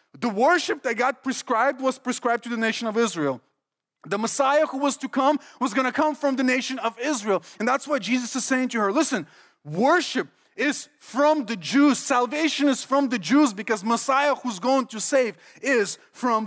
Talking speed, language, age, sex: 195 wpm, English, 30-49, male